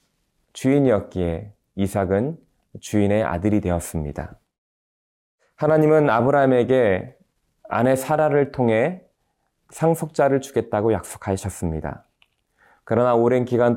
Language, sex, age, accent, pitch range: Korean, male, 20-39, native, 100-130 Hz